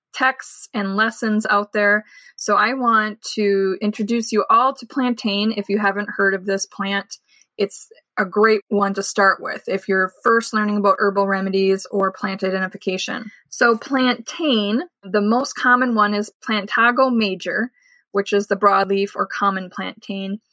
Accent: American